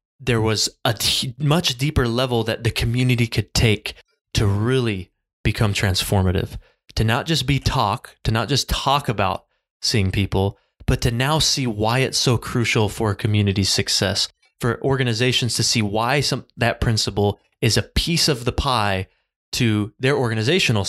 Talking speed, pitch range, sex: 160 wpm, 105-125 Hz, male